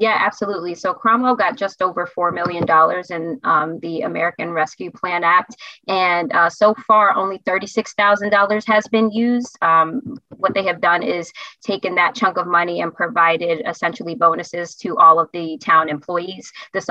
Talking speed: 165 wpm